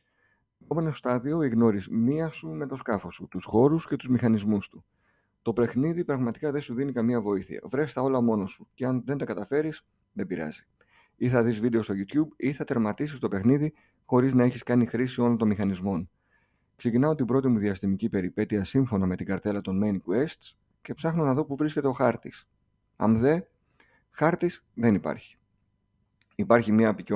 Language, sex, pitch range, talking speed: Greek, male, 105-140 Hz, 180 wpm